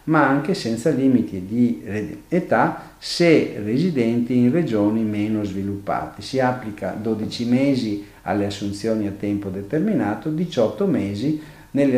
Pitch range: 105-140 Hz